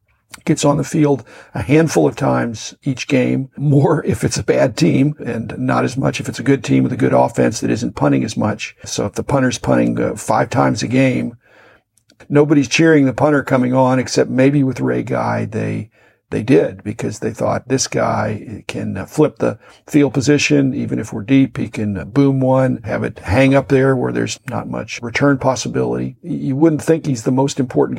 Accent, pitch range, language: American, 110-140 Hz, English